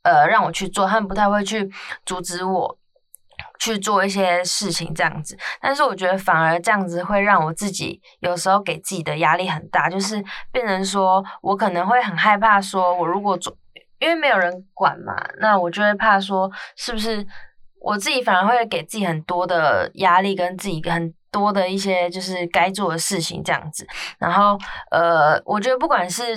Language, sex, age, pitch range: Chinese, female, 20-39, 175-205 Hz